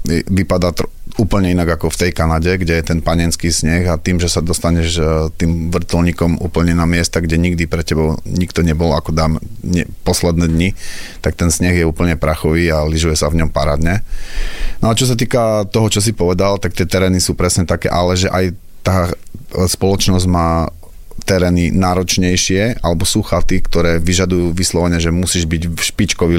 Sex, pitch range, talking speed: male, 80-90 Hz, 180 wpm